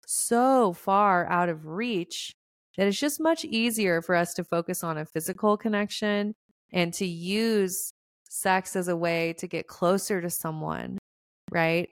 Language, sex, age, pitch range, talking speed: English, female, 30-49, 170-210 Hz, 155 wpm